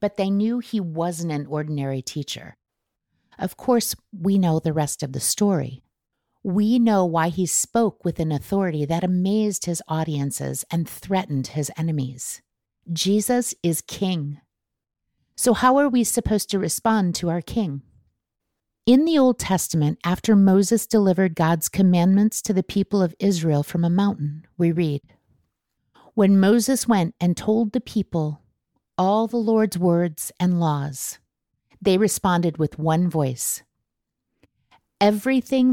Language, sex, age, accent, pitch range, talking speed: English, female, 50-69, American, 155-205 Hz, 140 wpm